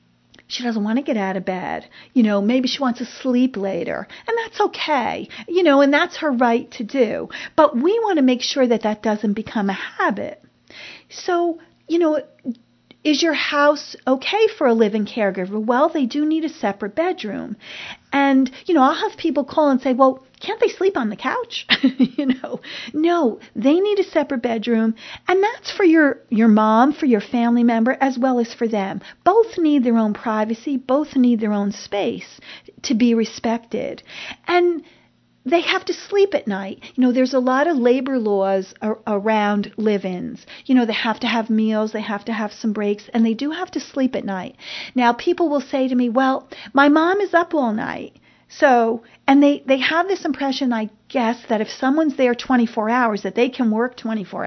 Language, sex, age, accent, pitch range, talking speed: English, female, 40-59, American, 225-310 Hz, 200 wpm